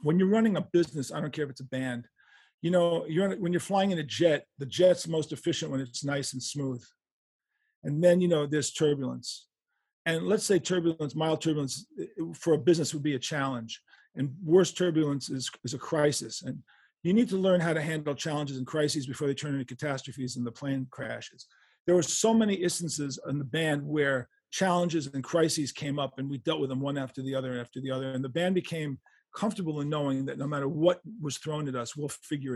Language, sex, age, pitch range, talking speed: English, male, 40-59, 140-170 Hz, 220 wpm